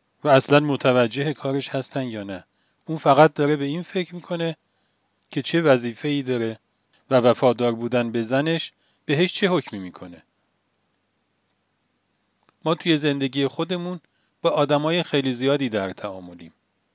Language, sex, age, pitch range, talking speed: Persian, male, 40-59, 125-160 Hz, 130 wpm